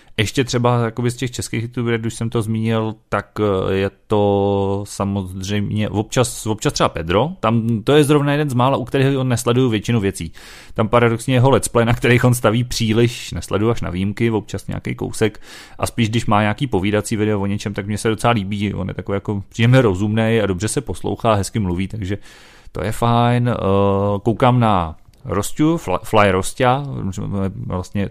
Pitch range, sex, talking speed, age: 100-115 Hz, male, 175 wpm, 30-49